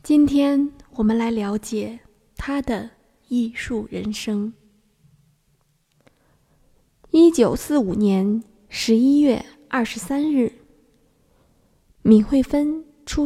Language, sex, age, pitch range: Chinese, female, 20-39, 215-280 Hz